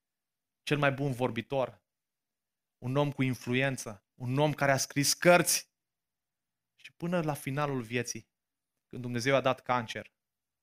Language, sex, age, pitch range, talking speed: Romanian, male, 20-39, 120-165 Hz, 135 wpm